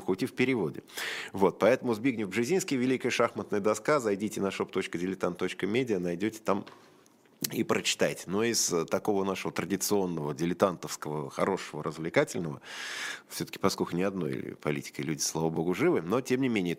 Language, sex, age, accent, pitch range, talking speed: Russian, male, 20-39, native, 80-110 Hz, 140 wpm